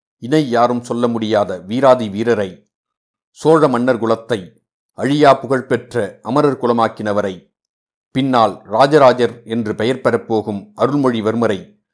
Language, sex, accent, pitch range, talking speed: Tamil, male, native, 110-130 Hz, 95 wpm